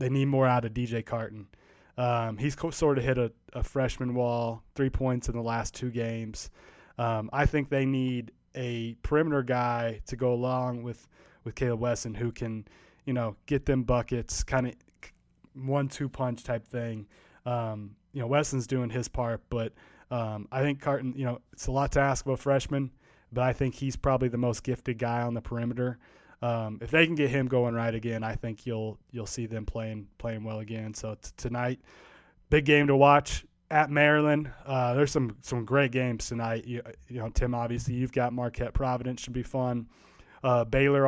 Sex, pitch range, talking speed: male, 115-135 Hz, 195 wpm